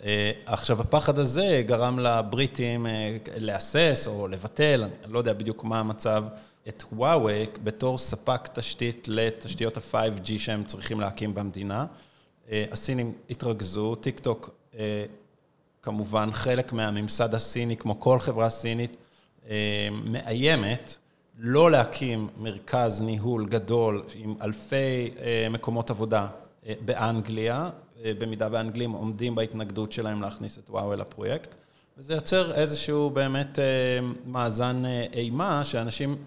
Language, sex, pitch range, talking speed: Hebrew, male, 110-130 Hz, 115 wpm